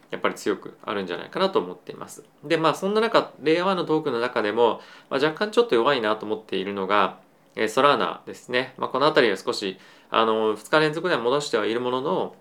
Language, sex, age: Japanese, male, 20-39